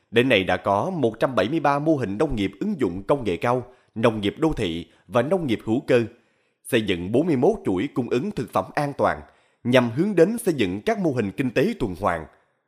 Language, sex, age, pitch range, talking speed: Vietnamese, male, 20-39, 110-175 Hz, 215 wpm